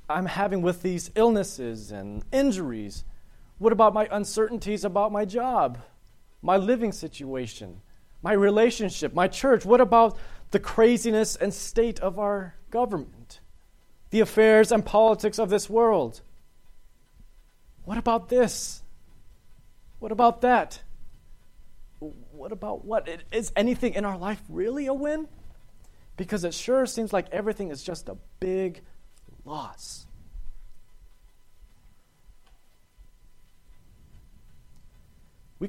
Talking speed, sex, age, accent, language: 110 wpm, male, 30-49, American, English